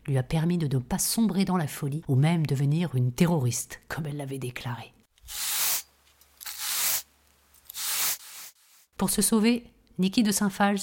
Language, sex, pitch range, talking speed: French, female, 145-210 Hz, 145 wpm